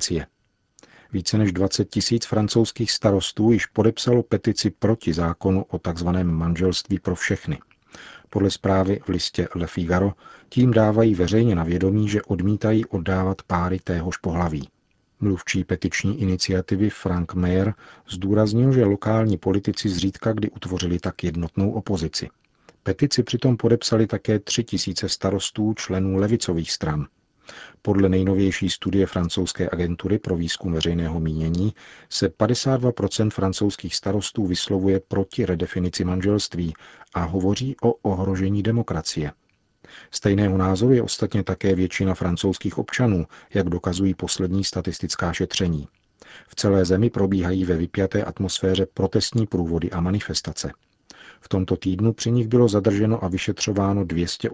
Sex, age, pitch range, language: male, 40-59, 90-105 Hz, Czech